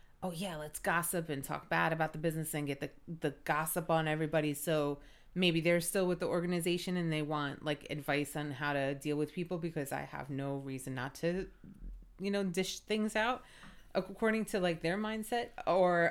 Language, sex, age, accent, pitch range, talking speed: English, female, 30-49, American, 145-175 Hz, 195 wpm